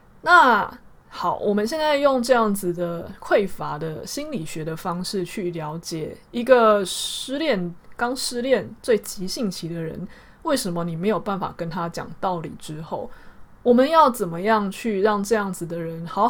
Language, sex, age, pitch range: Chinese, female, 20-39, 170-235 Hz